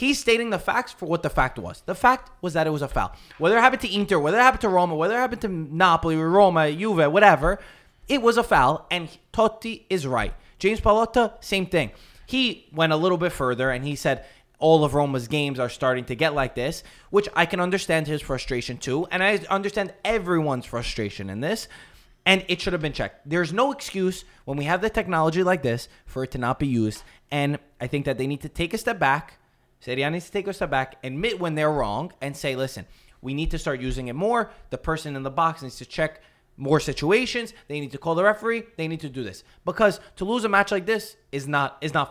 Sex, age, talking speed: male, 20-39, 235 wpm